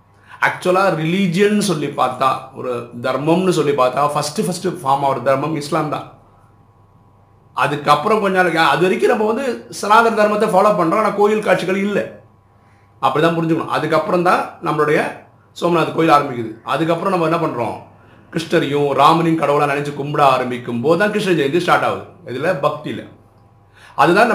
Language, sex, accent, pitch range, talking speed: Tamil, male, native, 120-175 Hz, 145 wpm